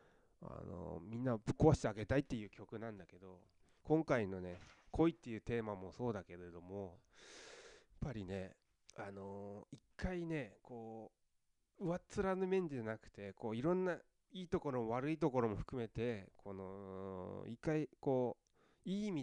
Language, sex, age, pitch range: Japanese, male, 20-39, 100-155 Hz